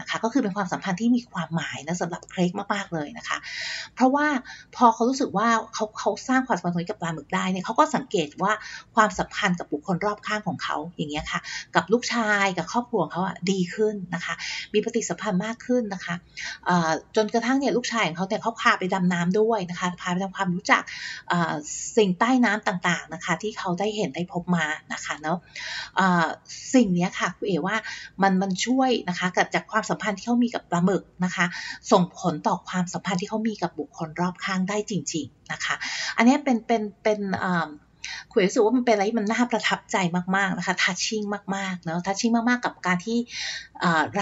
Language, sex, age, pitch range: Thai, female, 30-49, 175-225 Hz